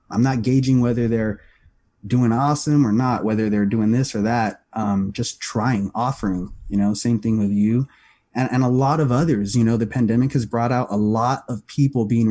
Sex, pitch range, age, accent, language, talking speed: male, 110-145 Hz, 30-49, American, English, 210 wpm